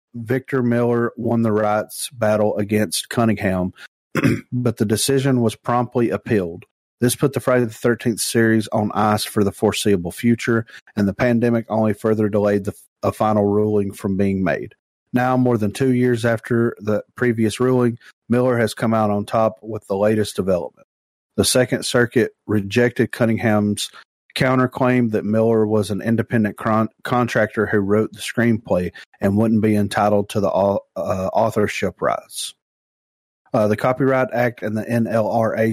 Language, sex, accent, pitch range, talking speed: English, male, American, 105-120 Hz, 155 wpm